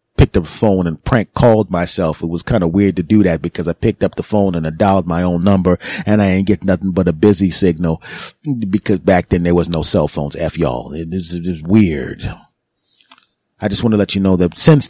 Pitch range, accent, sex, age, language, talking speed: 85-105 Hz, American, male, 30-49, English, 240 wpm